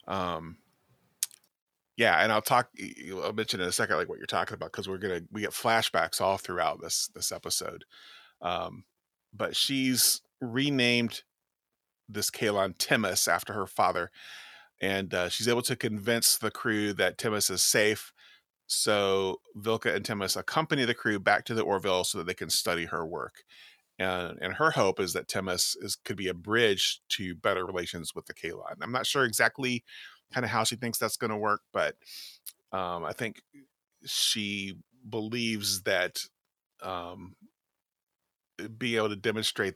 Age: 30-49